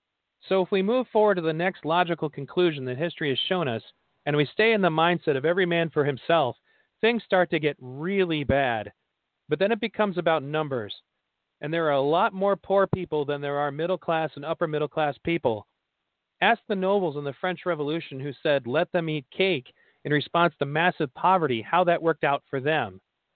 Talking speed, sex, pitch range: 205 wpm, male, 145-185 Hz